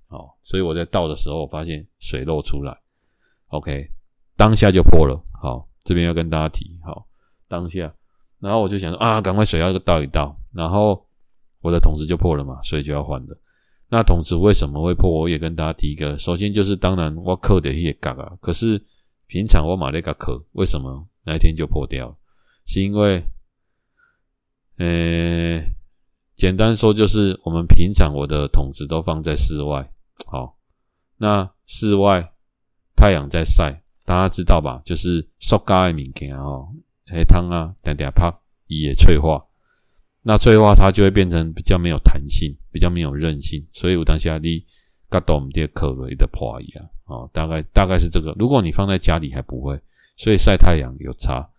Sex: male